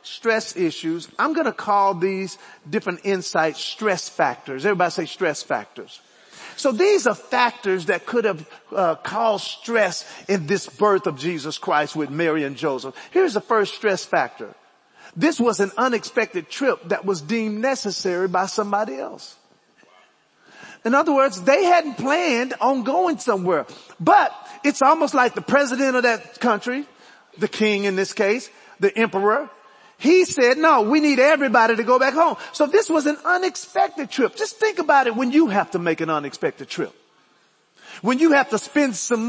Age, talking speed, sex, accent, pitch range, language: 40-59, 170 wpm, male, American, 205-290 Hz, English